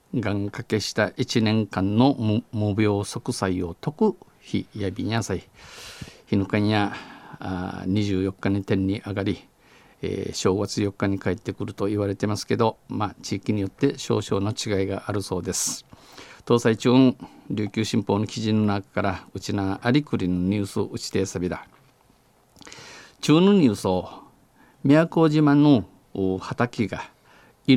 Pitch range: 95-130 Hz